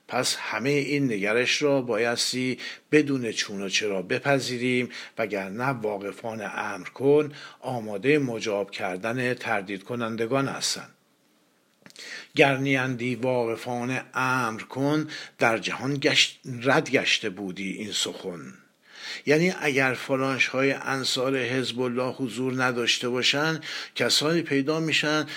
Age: 60-79